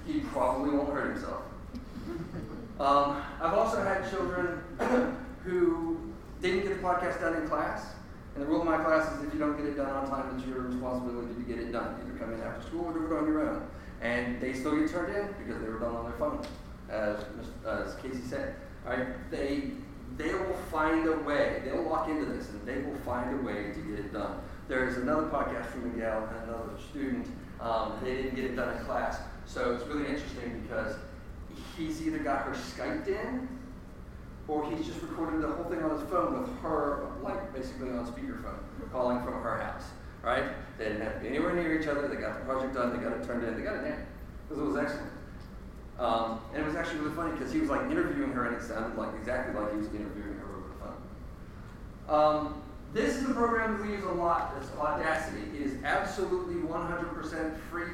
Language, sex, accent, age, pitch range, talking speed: English, male, American, 40-59, 125-175 Hz, 220 wpm